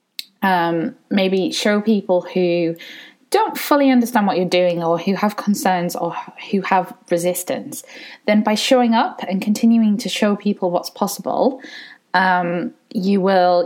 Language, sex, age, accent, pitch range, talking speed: English, female, 20-39, British, 170-230 Hz, 145 wpm